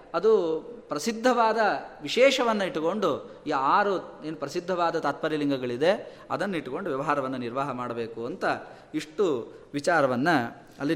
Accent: native